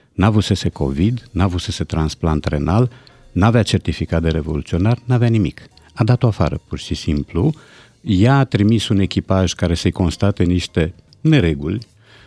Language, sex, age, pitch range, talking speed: Romanian, male, 50-69, 90-125 Hz, 160 wpm